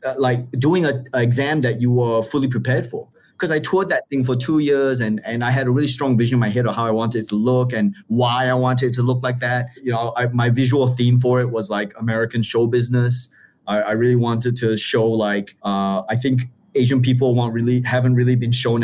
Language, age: English, 30-49